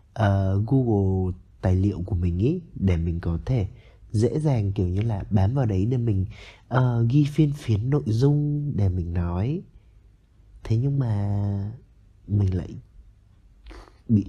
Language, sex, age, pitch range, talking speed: Vietnamese, male, 20-39, 100-130 Hz, 145 wpm